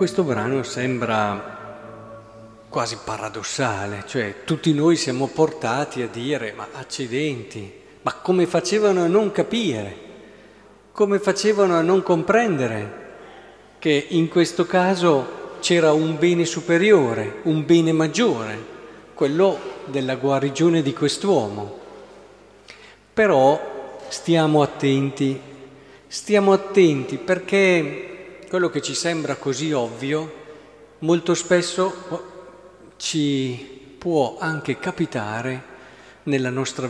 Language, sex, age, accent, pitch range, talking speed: Italian, male, 50-69, native, 135-185 Hz, 100 wpm